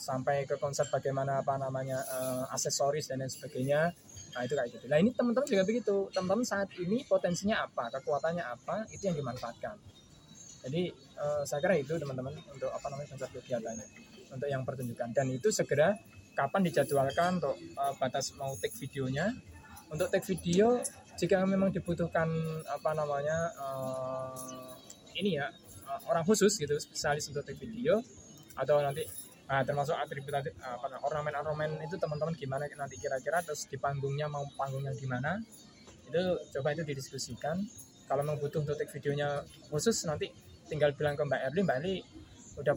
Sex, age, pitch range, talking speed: male, 20-39, 135-170 Hz, 150 wpm